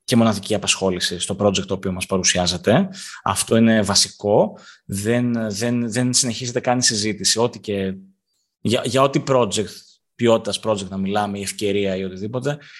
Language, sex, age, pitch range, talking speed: Greek, male, 20-39, 100-125 Hz, 155 wpm